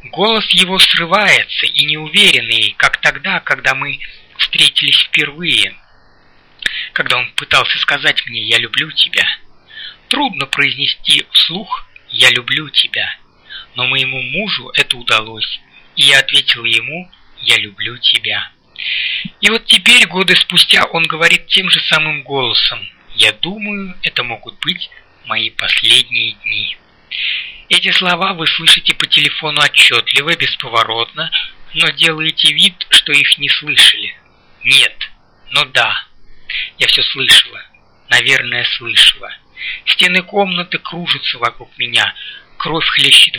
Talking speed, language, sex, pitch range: 120 wpm, Russian, male, 125-190 Hz